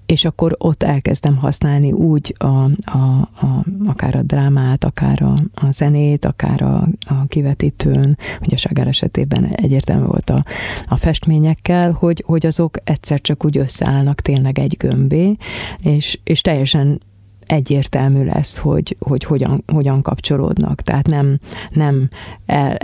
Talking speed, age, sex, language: 140 wpm, 30-49, female, Hungarian